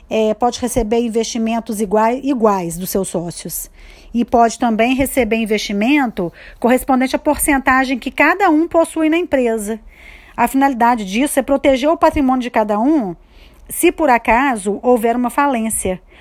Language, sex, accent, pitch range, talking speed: Portuguese, female, Brazilian, 210-270 Hz, 135 wpm